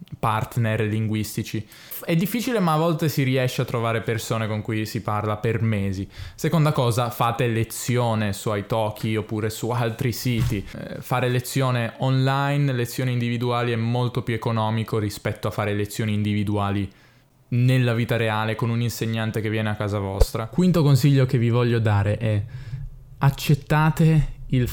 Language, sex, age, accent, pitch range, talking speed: Italian, male, 20-39, native, 115-135 Hz, 155 wpm